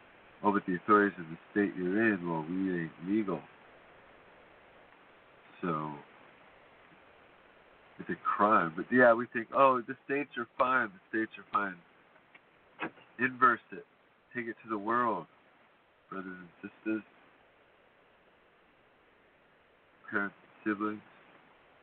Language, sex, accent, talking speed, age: English, male, American, 120 wpm, 50-69